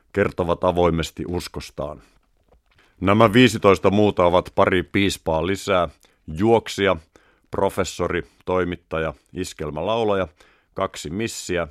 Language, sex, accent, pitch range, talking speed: Finnish, male, native, 85-100 Hz, 80 wpm